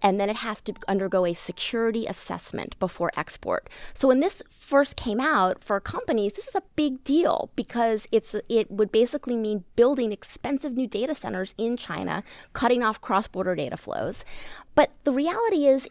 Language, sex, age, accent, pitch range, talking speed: English, female, 20-39, American, 190-245 Hz, 175 wpm